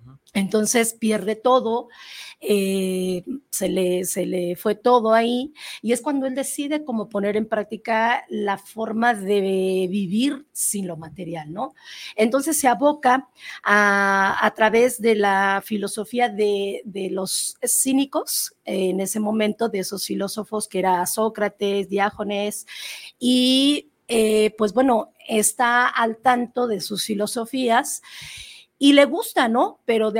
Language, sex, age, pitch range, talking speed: Spanish, female, 40-59, 200-245 Hz, 135 wpm